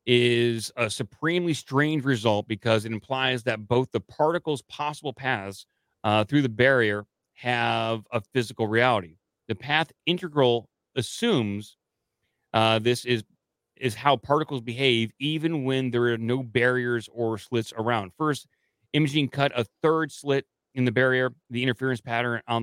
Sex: male